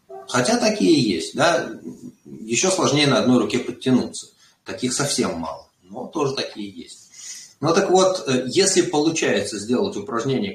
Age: 30-49